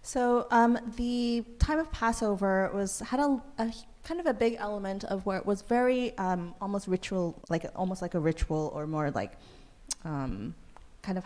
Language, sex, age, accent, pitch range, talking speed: English, female, 30-49, American, 170-210 Hz, 180 wpm